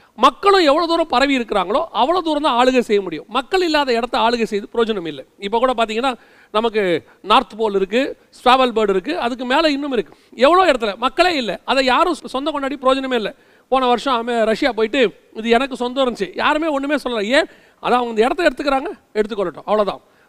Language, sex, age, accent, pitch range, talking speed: Tamil, male, 40-59, native, 215-280 Hz, 180 wpm